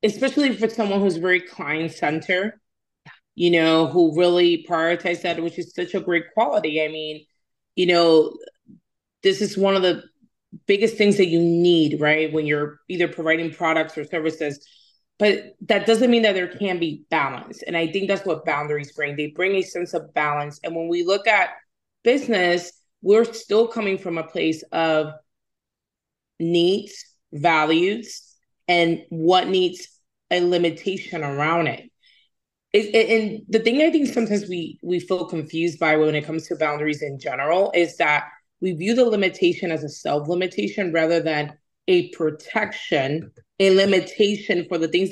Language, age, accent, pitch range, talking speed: English, 20-39, American, 160-200 Hz, 165 wpm